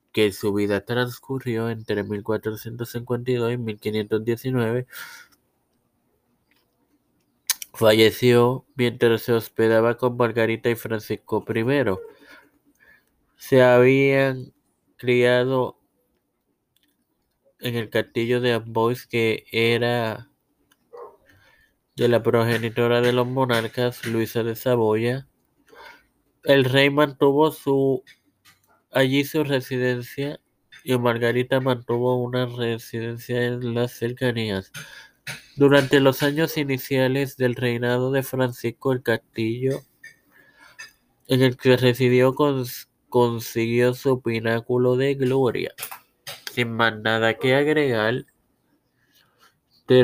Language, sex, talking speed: Spanish, male, 90 wpm